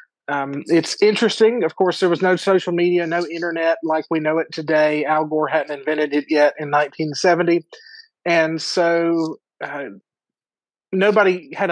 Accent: American